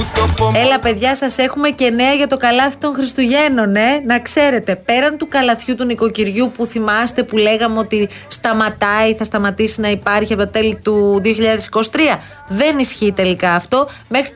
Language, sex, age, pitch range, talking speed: Greek, female, 30-49, 210-265 Hz, 160 wpm